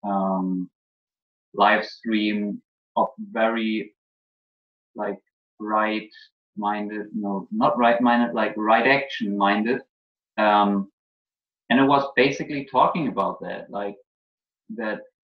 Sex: male